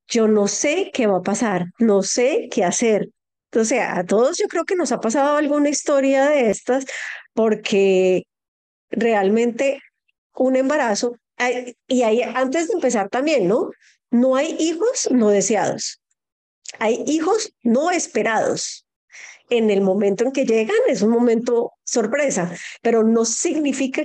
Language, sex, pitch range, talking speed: Spanish, female, 215-275 Hz, 140 wpm